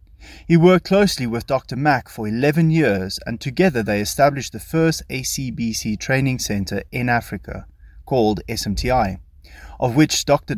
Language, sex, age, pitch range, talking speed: English, male, 30-49, 100-145 Hz, 140 wpm